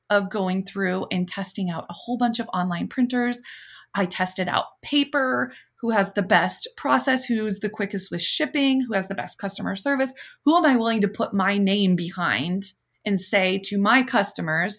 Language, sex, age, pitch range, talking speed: English, female, 20-39, 180-230 Hz, 185 wpm